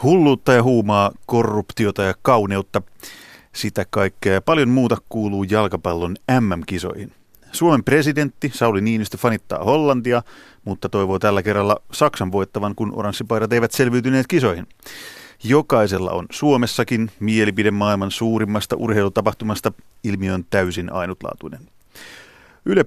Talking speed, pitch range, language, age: 115 wpm, 100-125 Hz, Finnish, 30-49